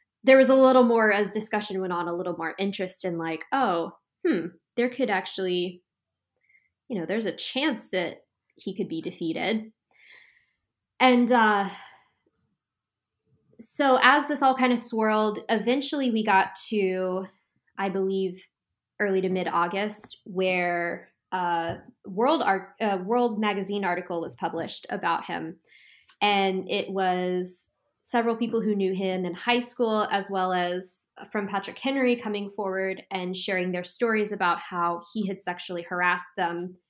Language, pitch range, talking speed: English, 185-230 Hz, 145 wpm